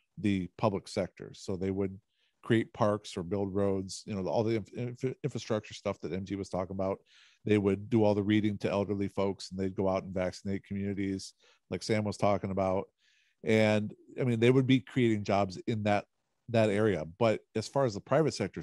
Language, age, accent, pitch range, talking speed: English, 50-69, American, 95-115 Hz, 200 wpm